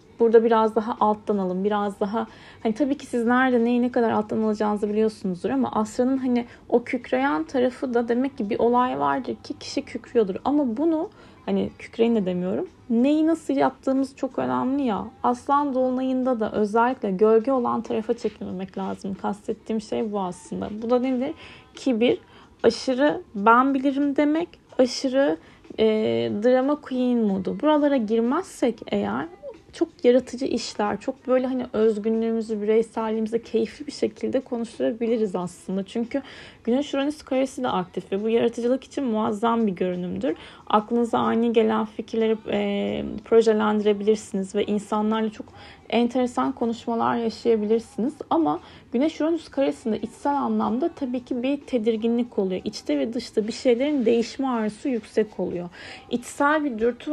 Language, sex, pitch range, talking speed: Turkish, female, 220-265 Hz, 140 wpm